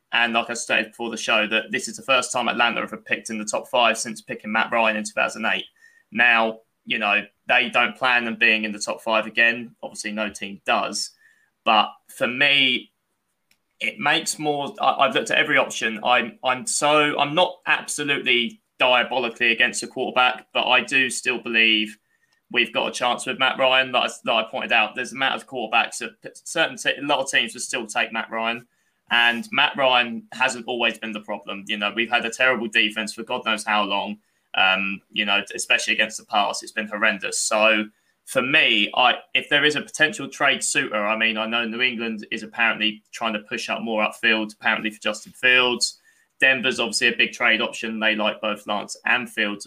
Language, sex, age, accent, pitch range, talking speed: English, male, 20-39, British, 110-130 Hz, 210 wpm